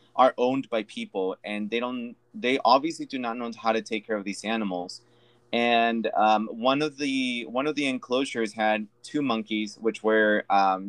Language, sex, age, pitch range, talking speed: English, male, 20-39, 105-120 Hz, 185 wpm